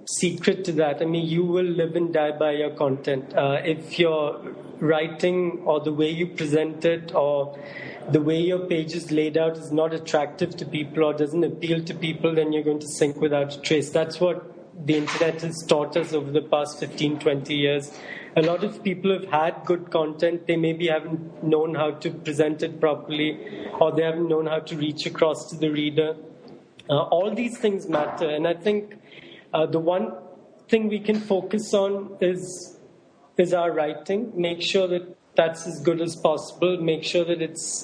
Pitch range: 155-175 Hz